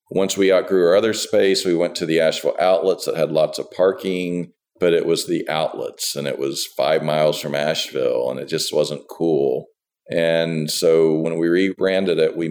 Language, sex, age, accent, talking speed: English, male, 50-69, American, 195 wpm